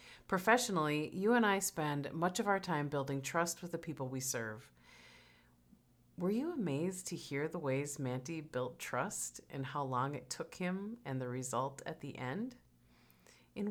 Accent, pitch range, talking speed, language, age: American, 120-165 Hz, 170 wpm, English, 40-59